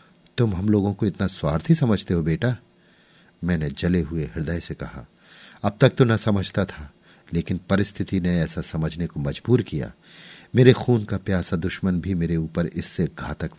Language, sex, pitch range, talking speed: Hindi, male, 90-130 Hz, 170 wpm